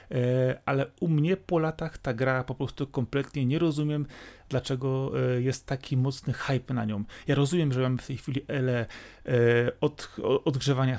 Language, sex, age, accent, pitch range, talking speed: Polish, male, 30-49, native, 125-150 Hz, 155 wpm